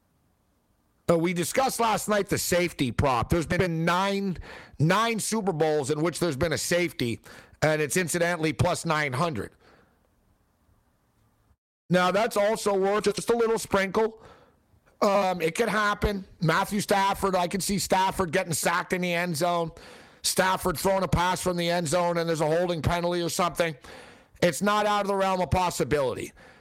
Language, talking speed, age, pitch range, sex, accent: English, 160 wpm, 50-69, 160-190 Hz, male, American